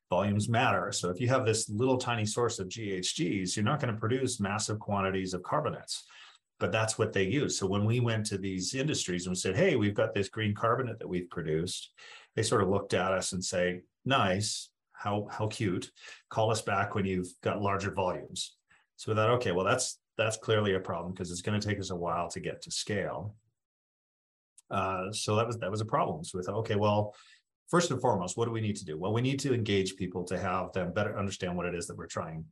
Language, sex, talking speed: English, male, 235 wpm